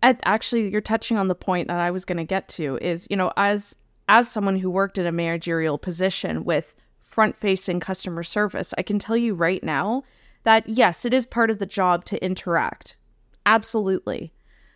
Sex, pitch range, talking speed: female, 180-225 Hz, 190 wpm